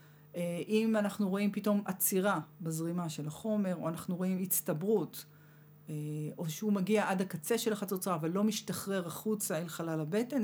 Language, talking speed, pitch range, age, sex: Hebrew, 160 wpm, 155-205 Hz, 40-59, female